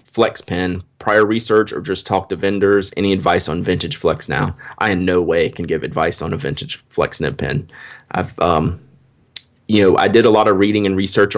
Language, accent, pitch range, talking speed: English, American, 90-105 Hz, 210 wpm